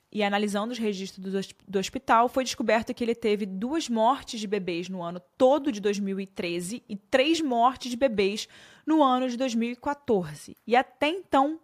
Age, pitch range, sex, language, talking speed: 20-39, 185-250 Hz, female, Portuguese, 165 wpm